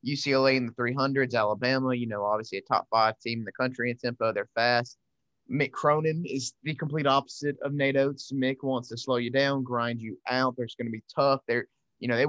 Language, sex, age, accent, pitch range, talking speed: English, male, 20-39, American, 125-150 Hz, 225 wpm